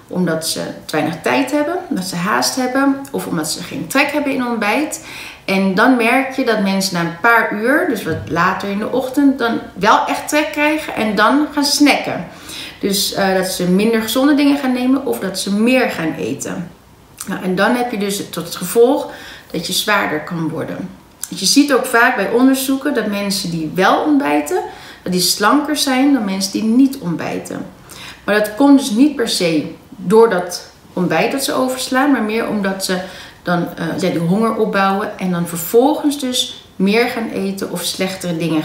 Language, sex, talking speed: Dutch, female, 195 wpm